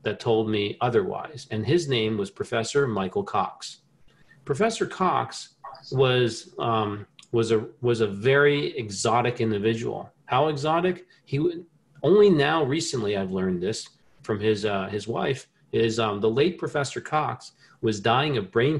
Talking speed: 150 wpm